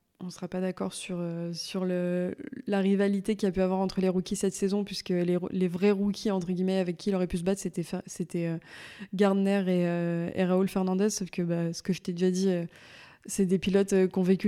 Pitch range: 180-195 Hz